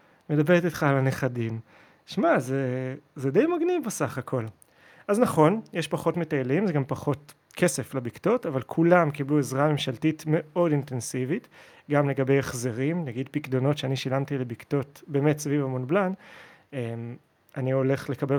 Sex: male